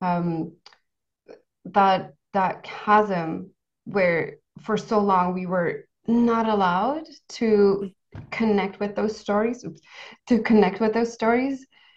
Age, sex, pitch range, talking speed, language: 20-39, female, 190-220 Hz, 110 wpm, English